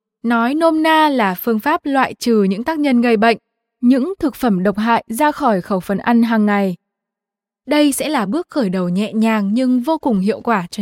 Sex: female